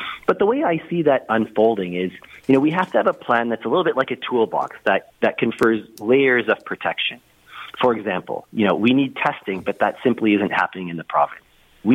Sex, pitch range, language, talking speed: male, 100-135 Hz, English, 225 wpm